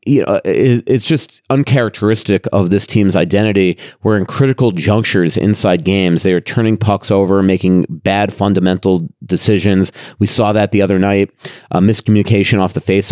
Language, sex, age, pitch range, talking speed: English, male, 30-49, 90-110 Hz, 160 wpm